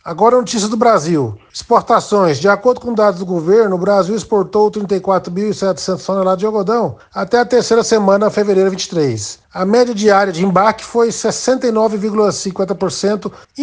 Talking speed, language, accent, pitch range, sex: 145 wpm, Portuguese, Brazilian, 185-225 Hz, male